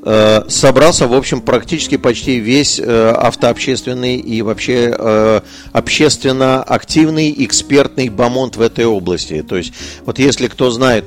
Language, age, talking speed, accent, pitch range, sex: Russian, 50-69, 120 wpm, native, 110-135 Hz, male